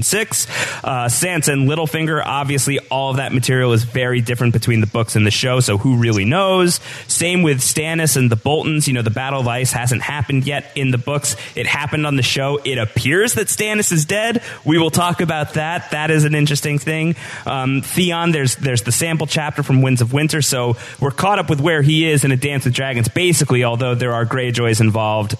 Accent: American